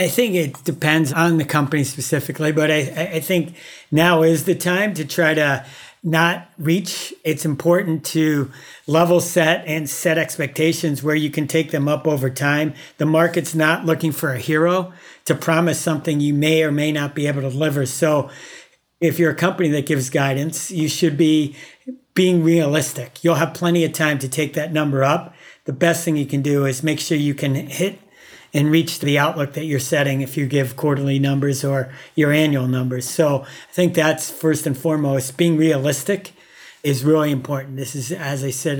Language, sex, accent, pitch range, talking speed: English, male, American, 140-165 Hz, 190 wpm